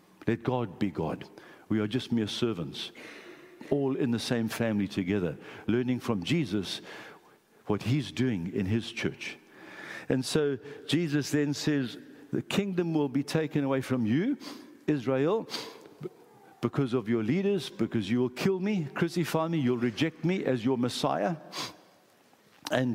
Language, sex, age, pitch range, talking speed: English, male, 60-79, 125-180 Hz, 145 wpm